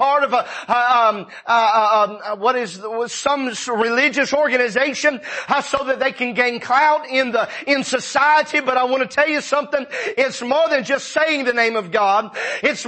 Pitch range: 240-300 Hz